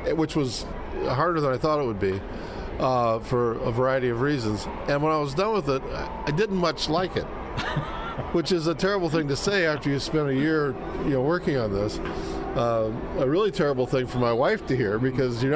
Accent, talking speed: American, 215 wpm